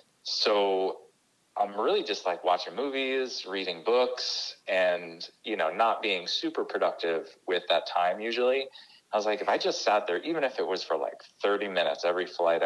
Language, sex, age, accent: English, male, 30-49, American